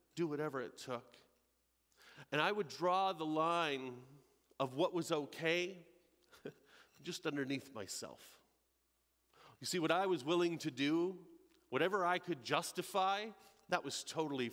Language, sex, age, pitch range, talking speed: English, male, 40-59, 140-190 Hz, 130 wpm